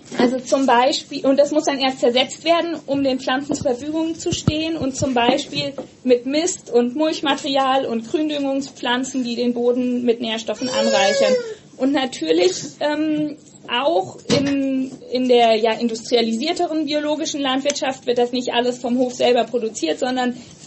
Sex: female